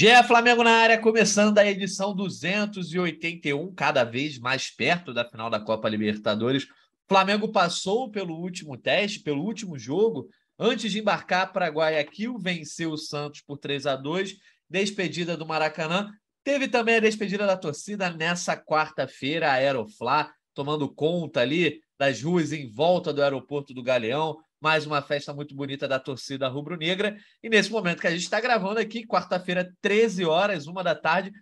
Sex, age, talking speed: male, 20-39, 155 wpm